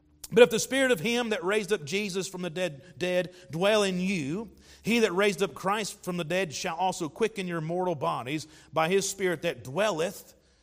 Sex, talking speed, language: male, 205 wpm, English